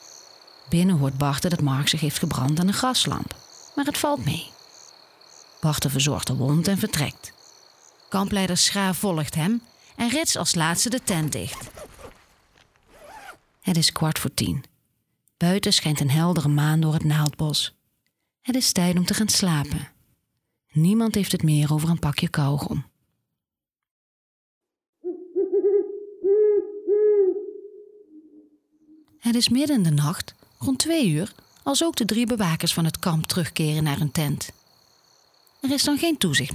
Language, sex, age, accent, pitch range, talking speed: Dutch, female, 30-49, Dutch, 155-255 Hz, 140 wpm